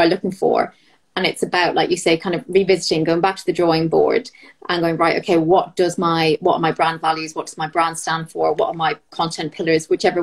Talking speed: 240 wpm